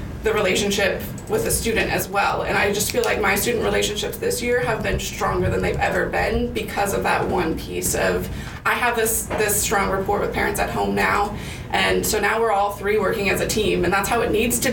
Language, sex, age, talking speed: English, female, 20-39, 230 wpm